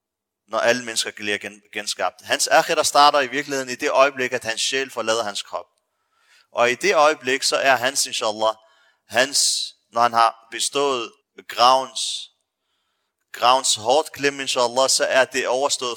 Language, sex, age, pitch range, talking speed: Danish, male, 30-49, 115-145 Hz, 150 wpm